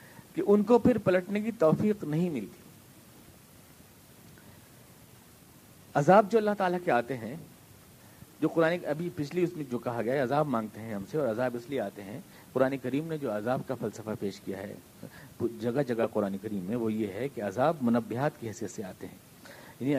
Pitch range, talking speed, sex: 115-170 Hz, 190 wpm, male